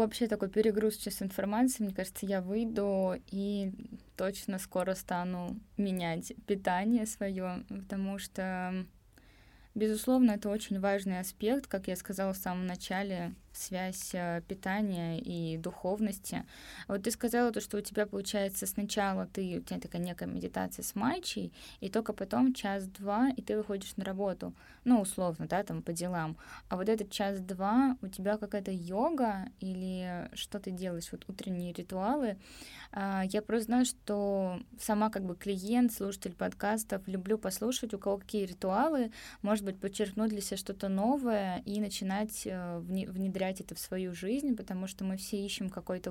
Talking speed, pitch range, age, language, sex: 150 wpm, 180-210 Hz, 20-39, Russian, female